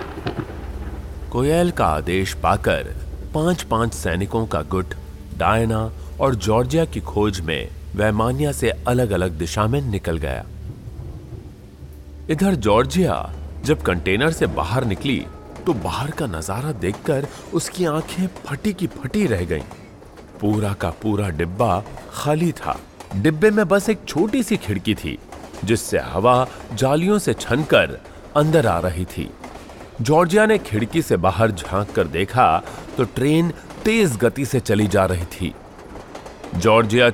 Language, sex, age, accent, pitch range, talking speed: Hindi, male, 30-49, native, 90-145 Hz, 130 wpm